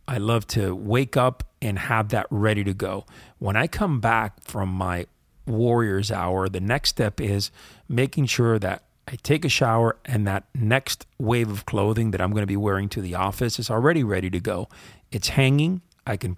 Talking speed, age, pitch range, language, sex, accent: 200 wpm, 40-59, 105-135 Hz, English, male, American